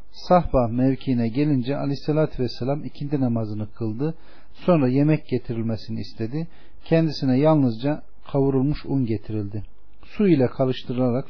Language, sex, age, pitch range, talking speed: Turkish, male, 40-59, 115-150 Hz, 105 wpm